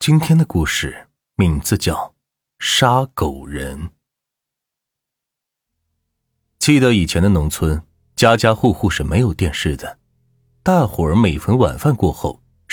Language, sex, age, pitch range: Chinese, male, 30-49, 80-120 Hz